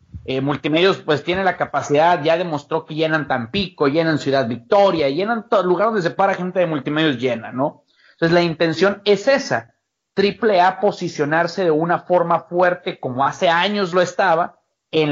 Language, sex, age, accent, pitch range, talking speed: English, male, 40-59, Mexican, 155-190 Hz, 170 wpm